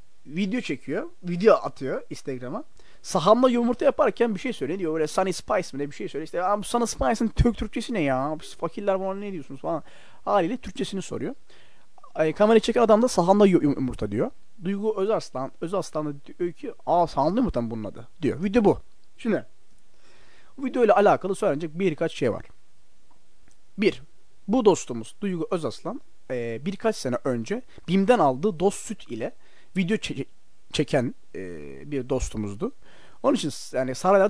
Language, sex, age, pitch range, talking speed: Turkish, male, 30-49, 135-210 Hz, 155 wpm